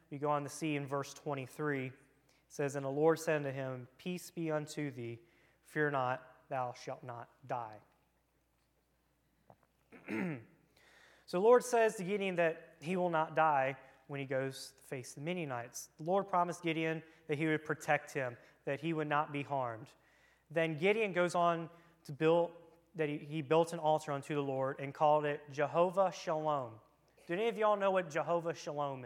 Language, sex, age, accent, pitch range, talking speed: English, male, 30-49, American, 140-165 Hz, 180 wpm